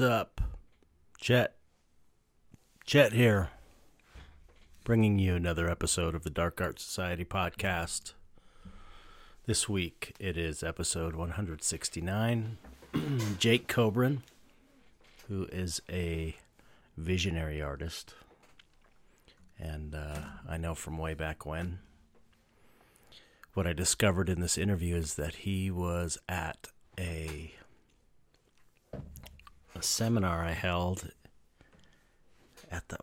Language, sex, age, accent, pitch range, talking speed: English, male, 40-59, American, 80-95 Hz, 95 wpm